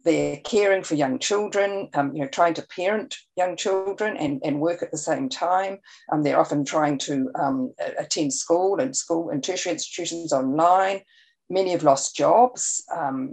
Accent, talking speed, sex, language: Australian, 165 wpm, female, English